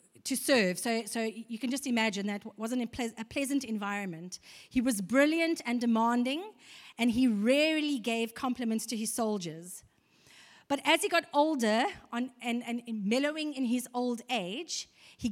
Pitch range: 220-280 Hz